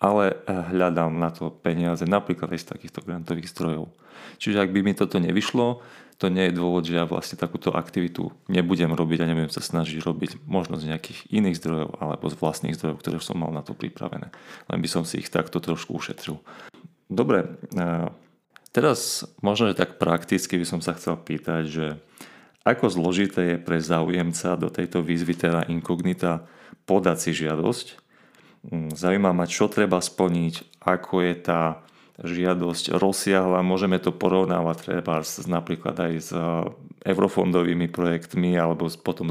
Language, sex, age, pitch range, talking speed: Slovak, male, 30-49, 85-95 Hz, 155 wpm